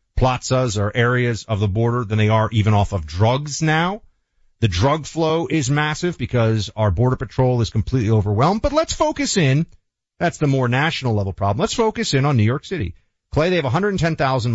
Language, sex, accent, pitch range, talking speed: English, male, American, 105-155 Hz, 195 wpm